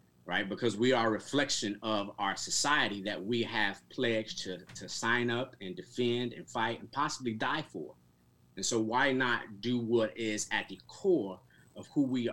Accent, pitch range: American, 95-120 Hz